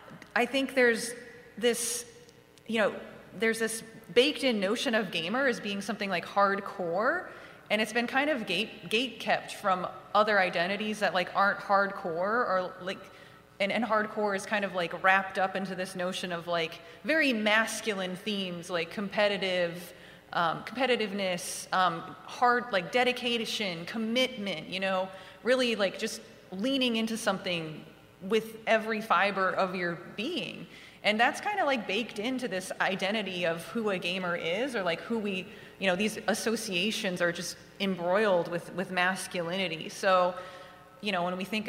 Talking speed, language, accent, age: 155 wpm, English, American, 30-49